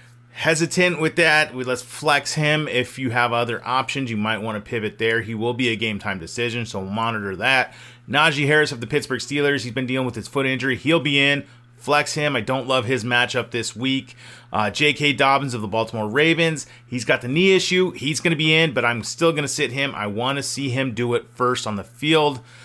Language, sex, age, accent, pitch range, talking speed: English, male, 30-49, American, 120-150 Hz, 235 wpm